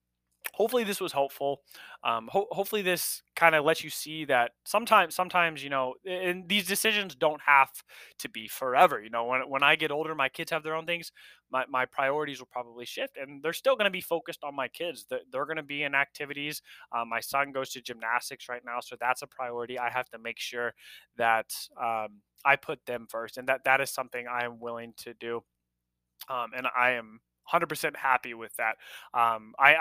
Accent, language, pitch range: American, English, 120-150 Hz